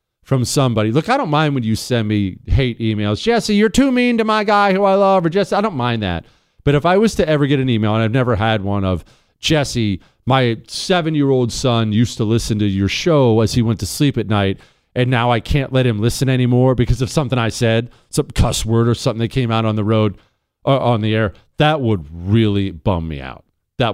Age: 40-59